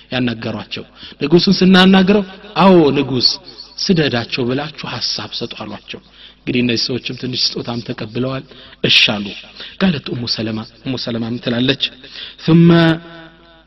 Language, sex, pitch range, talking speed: Amharic, male, 115-165 Hz, 85 wpm